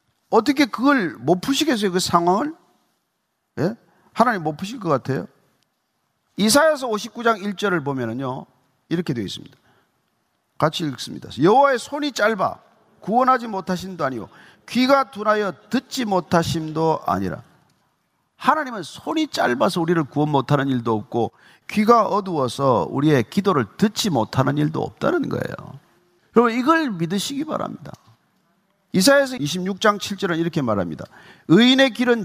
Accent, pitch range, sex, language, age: native, 160-240 Hz, male, Korean, 40-59